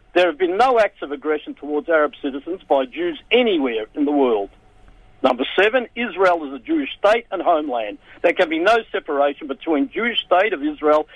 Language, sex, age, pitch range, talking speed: English, male, 50-69, 145-230 Hz, 190 wpm